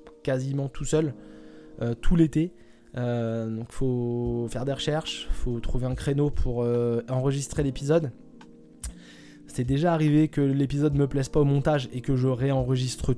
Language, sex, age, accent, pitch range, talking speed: French, male, 20-39, French, 130-160 Hz, 150 wpm